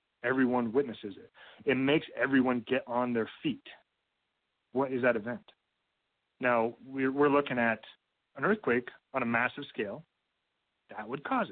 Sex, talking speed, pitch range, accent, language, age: male, 145 wpm, 125-165 Hz, American, English, 30-49